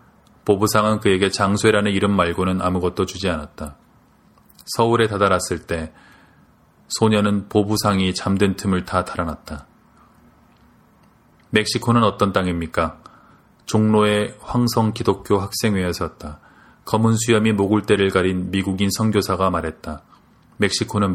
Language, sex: Korean, male